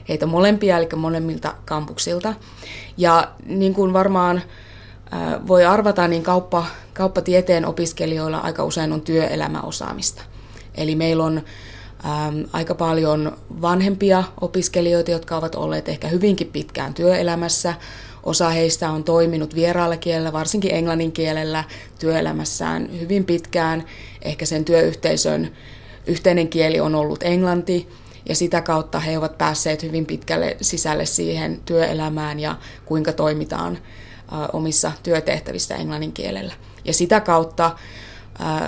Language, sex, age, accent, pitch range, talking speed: Finnish, female, 20-39, native, 105-170 Hz, 115 wpm